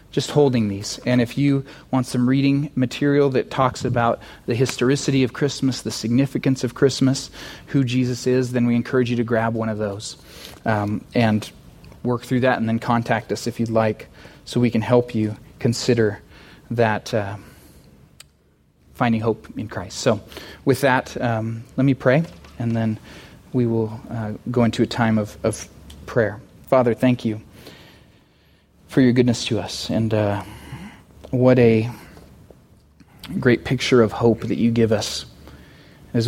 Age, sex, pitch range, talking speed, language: 30-49, male, 105-125 Hz, 160 wpm, English